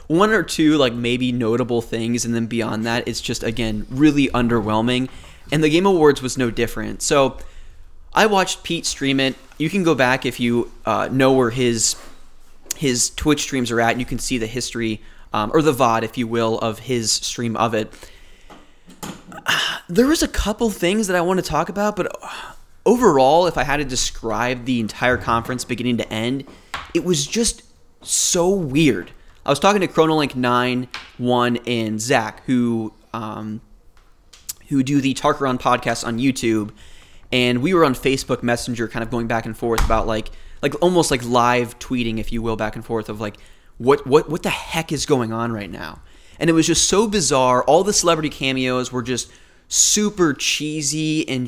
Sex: male